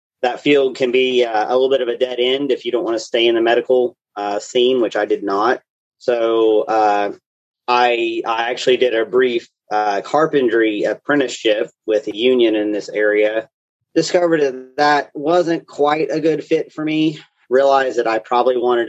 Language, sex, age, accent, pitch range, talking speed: English, male, 40-59, American, 110-135 Hz, 185 wpm